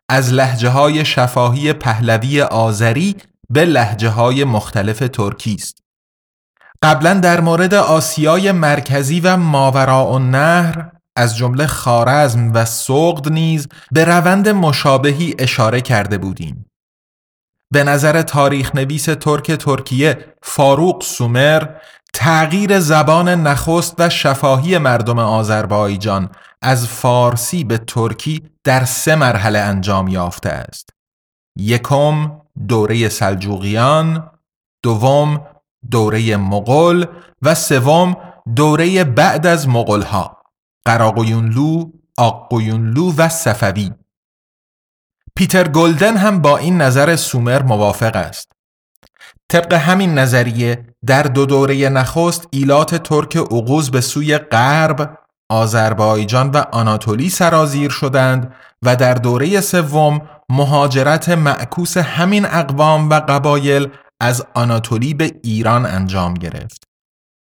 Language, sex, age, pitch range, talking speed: Persian, male, 30-49, 120-155 Hz, 100 wpm